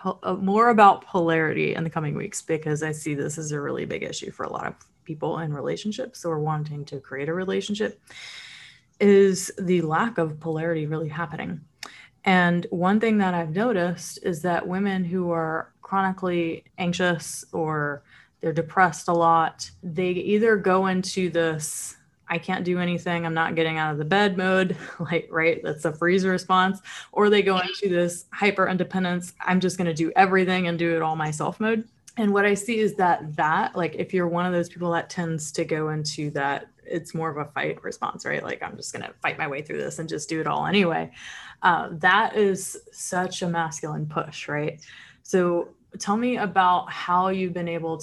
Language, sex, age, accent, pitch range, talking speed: English, female, 20-39, American, 160-185 Hz, 195 wpm